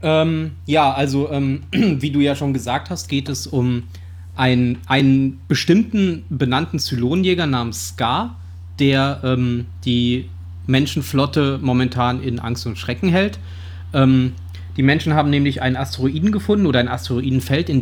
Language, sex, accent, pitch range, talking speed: German, male, German, 115-145 Hz, 140 wpm